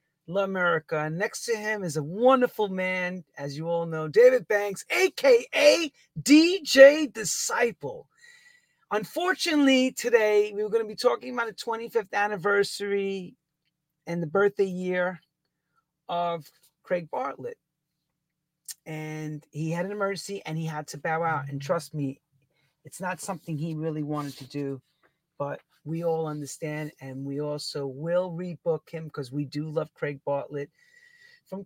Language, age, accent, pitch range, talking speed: English, 40-59, American, 160-220 Hz, 140 wpm